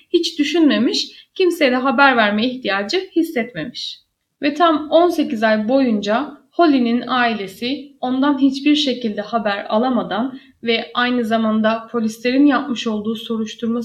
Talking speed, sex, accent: 115 wpm, female, native